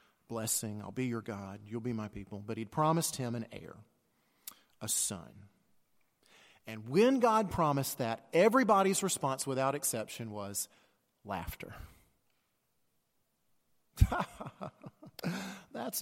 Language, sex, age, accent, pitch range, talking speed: English, male, 40-59, American, 105-165 Hz, 110 wpm